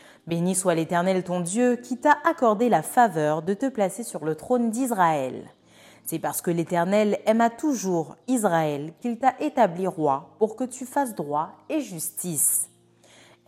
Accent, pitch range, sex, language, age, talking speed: French, 155-230 Hz, female, French, 30-49, 165 wpm